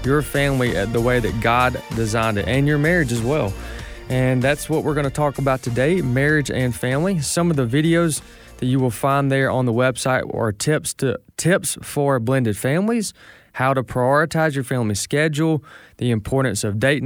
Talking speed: 190 wpm